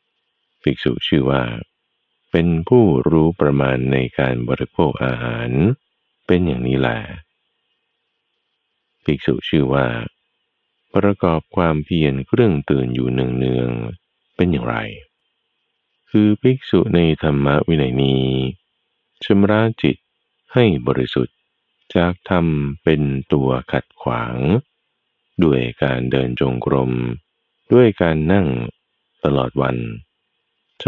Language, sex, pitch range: Thai, male, 65-85 Hz